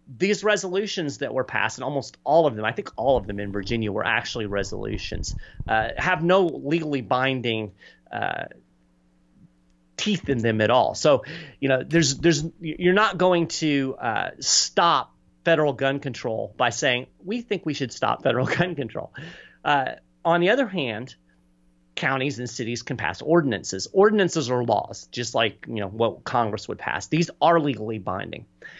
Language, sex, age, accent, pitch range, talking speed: English, male, 30-49, American, 110-155 Hz, 165 wpm